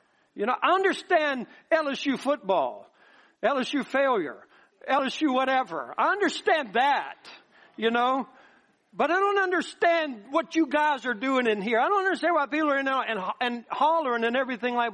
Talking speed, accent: 160 wpm, American